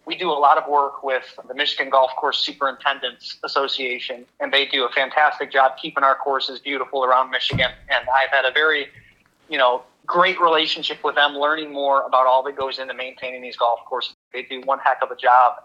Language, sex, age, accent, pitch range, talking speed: English, male, 30-49, American, 130-160 Hz, 205 wpm